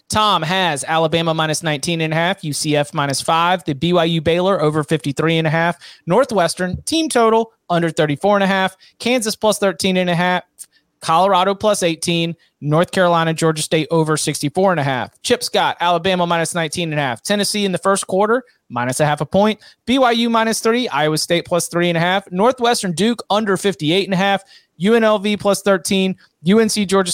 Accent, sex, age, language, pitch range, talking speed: American, male, 30-49, English, 160-195 Hz, 190 wpm